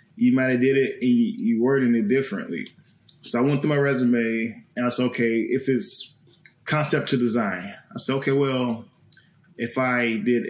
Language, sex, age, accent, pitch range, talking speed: English, male, 20-39, American, 120-140 Hz, 190 wpm